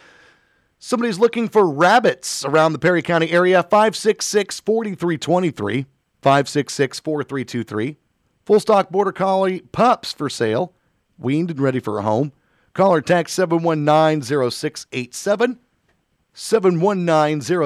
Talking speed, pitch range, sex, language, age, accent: 95 wpm, 140-200 Hz, male, English, 40-59, American